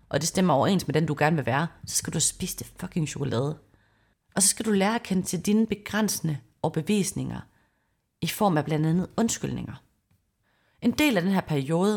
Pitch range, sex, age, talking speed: 150-220 Hz, female, 30-49, 200 wpm